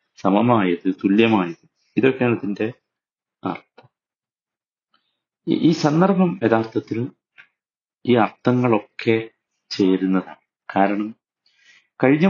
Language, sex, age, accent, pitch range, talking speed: Malayalam, male, 50-69, native, 105-140 Hz, 65 wpm